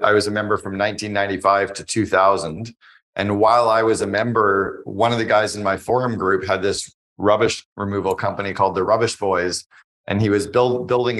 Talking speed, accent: 190 wpm, American